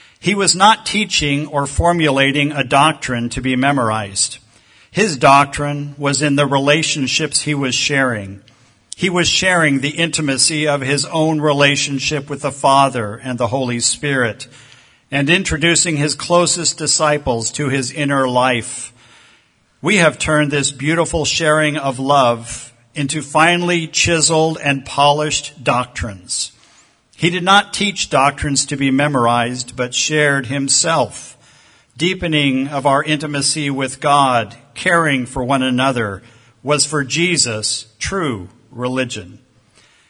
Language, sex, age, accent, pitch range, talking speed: English, male, 50-69, American, 125-155 Hz, 125 wpm